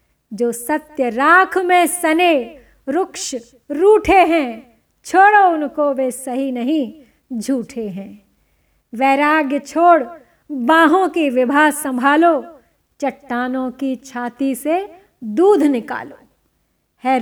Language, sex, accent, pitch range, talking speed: Hindi, female, native, 250-315 Hz, 100 wpm